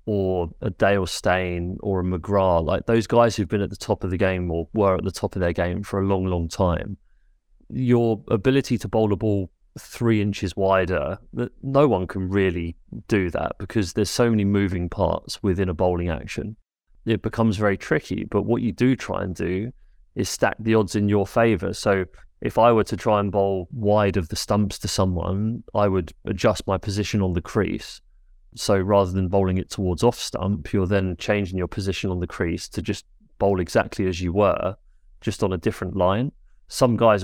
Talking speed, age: 205 wpm, 30-49